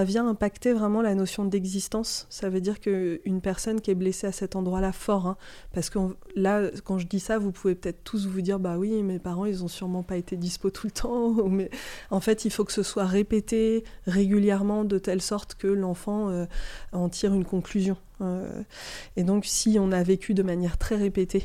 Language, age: French, 20-39